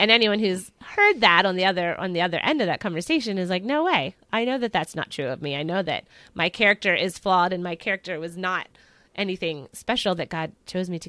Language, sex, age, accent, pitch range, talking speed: English, female, 30-49, American, 175-215 Hz, 250 wpm